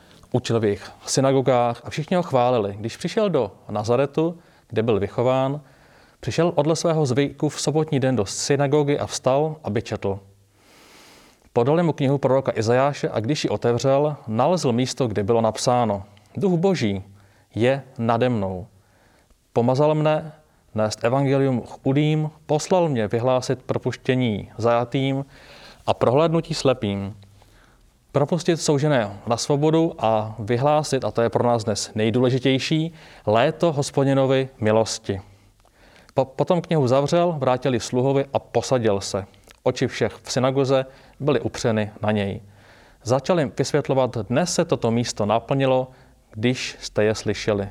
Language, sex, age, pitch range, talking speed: Czech, male, 30-49, 110-140 Hz, 130 wpm